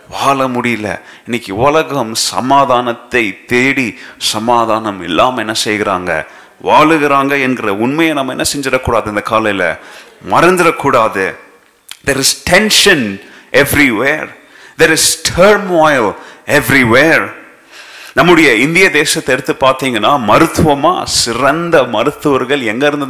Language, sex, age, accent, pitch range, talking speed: Tamil, male, 30-49, native, 130-155 Hz, 95 wpm